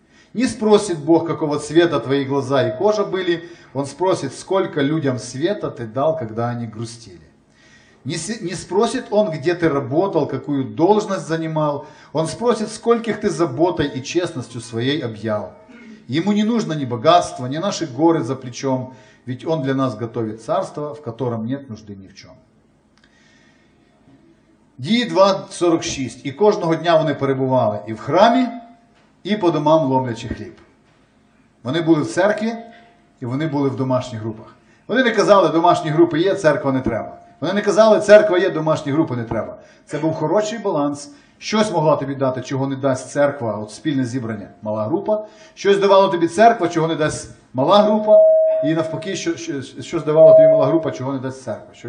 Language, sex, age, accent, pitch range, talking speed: Ukrainian, male, 40-59, native, 130-195 Hz, 170 wpm